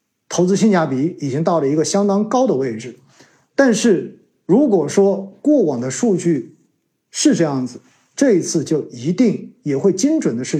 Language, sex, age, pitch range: Chinese, male, 50-69, 135-190 Hz